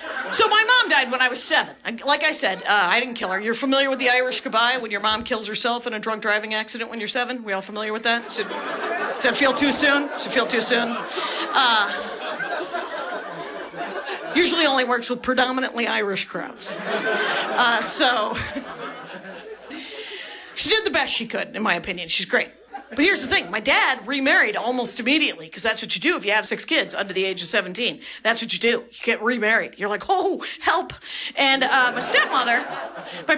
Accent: American